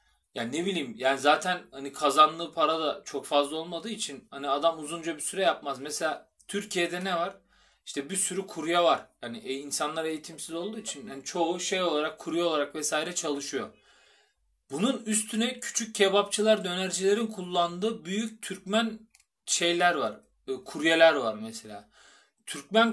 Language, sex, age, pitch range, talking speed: Turkish, male, 40-59, 145-190 Hz, 145 wpm